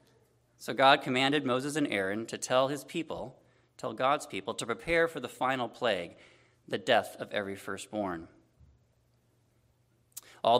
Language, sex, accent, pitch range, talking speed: English, male, American, 110-135 Hz, 140 wpm